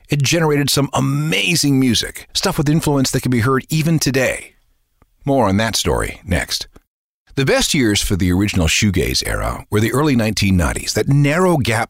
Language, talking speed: English, 170 wpm